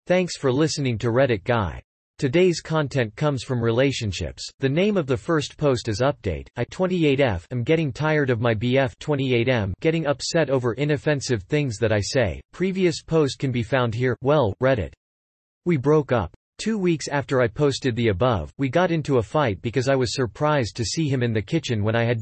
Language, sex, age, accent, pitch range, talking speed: English, male, 40-59, American, 110-150 Hz, 195 wpm